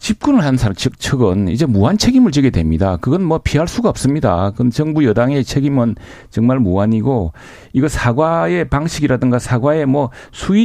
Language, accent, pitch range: Korean, native, 110-145 Hz